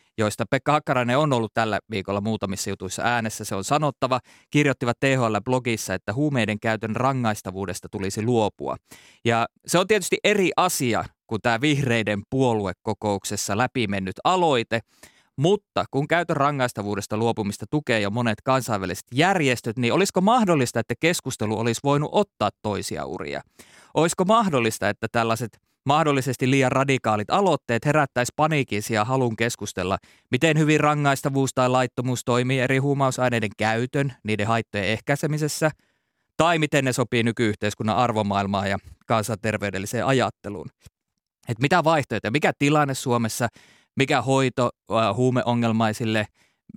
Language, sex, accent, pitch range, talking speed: Finnish, male, native, 110-140 Hz, 125 wpm